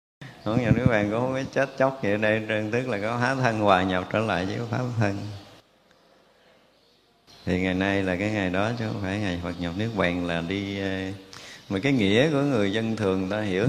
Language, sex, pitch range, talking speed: Vietnamese, male, 95-120 Hz, 215 wpm